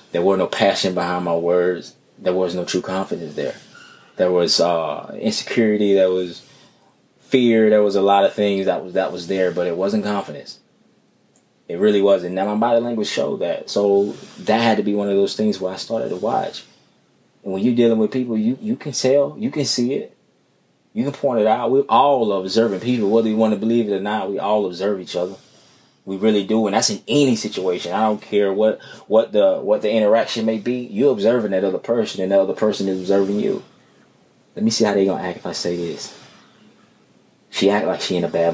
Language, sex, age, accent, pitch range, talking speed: English, male, 20-39, American, 95-110 Hz, 225 wpm